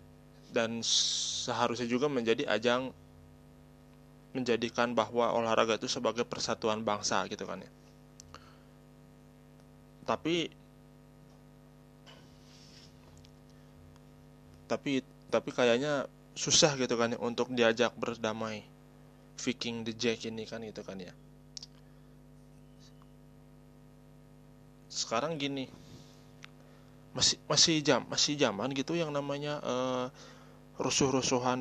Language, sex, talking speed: Indonesian, male, 85 wpm